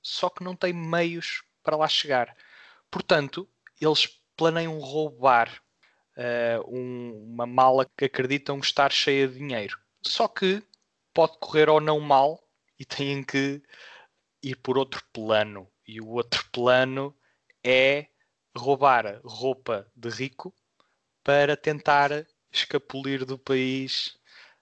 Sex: male